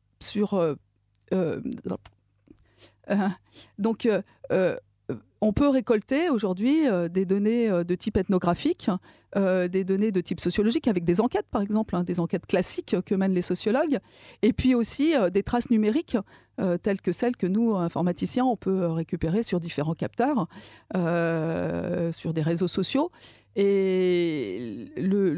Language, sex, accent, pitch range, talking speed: French, female, French, 175-225 Hz, 140 wpm